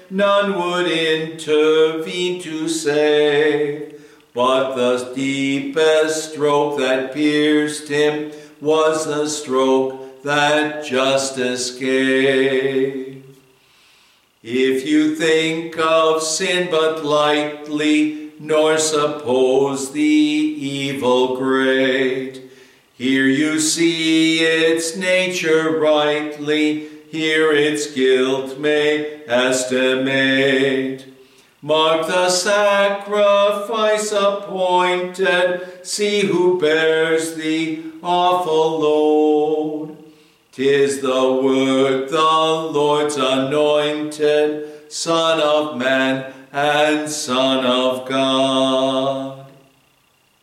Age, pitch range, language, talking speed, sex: 60-79, 135-160 Hz, English, 75 wpm, male